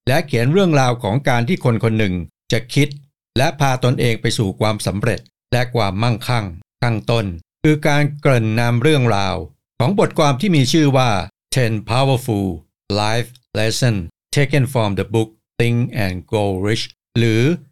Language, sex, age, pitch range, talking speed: English, male, 60-79, 105-135 Hz, 45 wpm